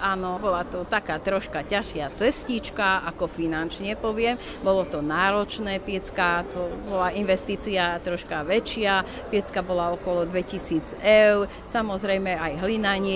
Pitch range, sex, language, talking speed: 180-220 Hz, female, Slovak, 125 wpm